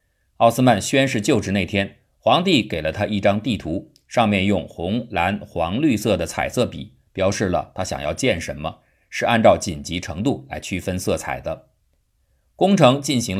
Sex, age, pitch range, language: male, 50-69, 90-120 Hz, Chinese